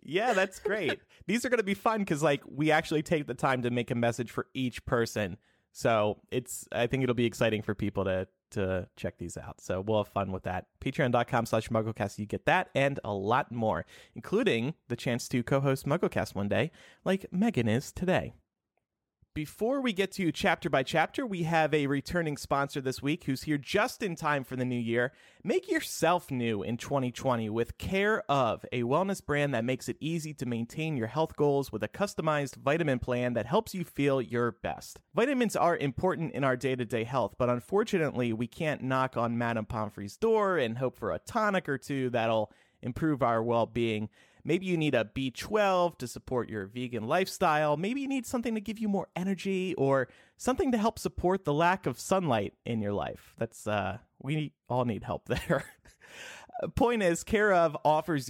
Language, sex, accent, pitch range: English, male, American, 115-170 Hz